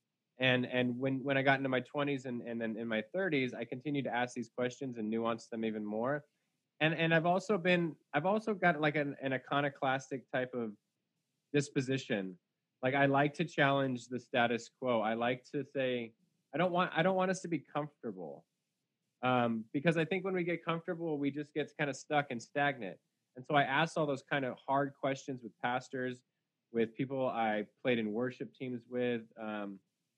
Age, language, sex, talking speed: 20-39, English, male, 200 wpm